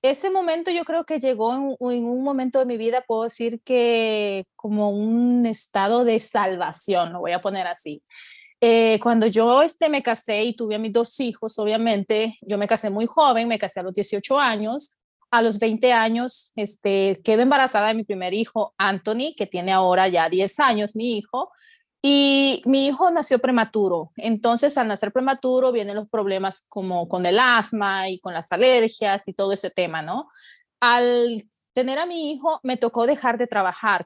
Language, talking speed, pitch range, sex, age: Spanish, 185 wpm, 210-255 Hz, female, 30-49